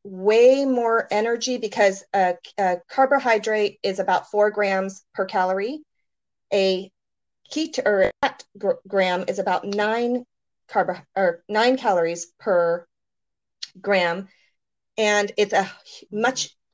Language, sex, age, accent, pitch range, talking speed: English, female, 30-49, American, 185-235 Hz, 105 wpm